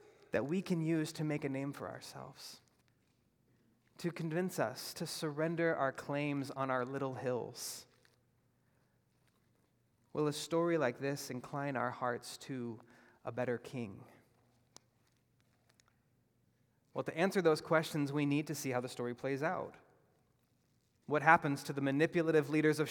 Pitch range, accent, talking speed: 130-170 Hz, American, 140 wpm